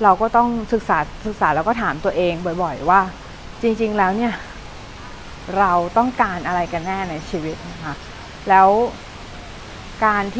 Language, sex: Thai, female